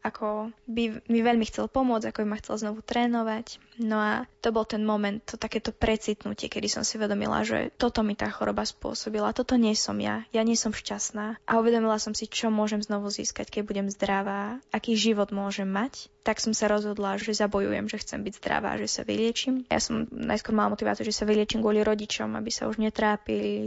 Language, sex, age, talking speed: Slovak, female, 20-39, 205 wpm